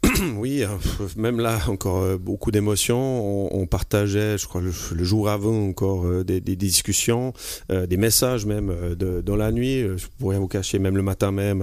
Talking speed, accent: 165 wpm, French